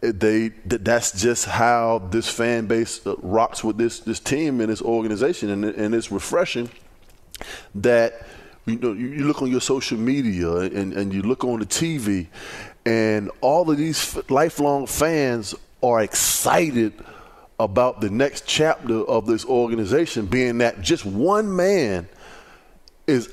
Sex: male